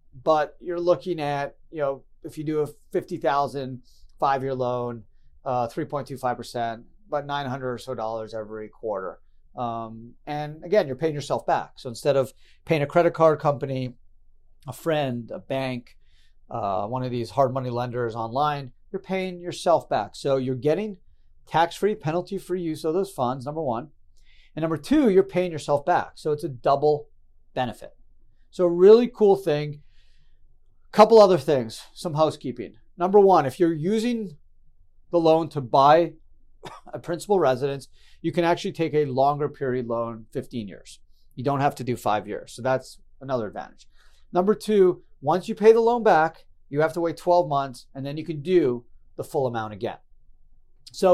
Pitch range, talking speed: 120-175 Hz, 175 wpm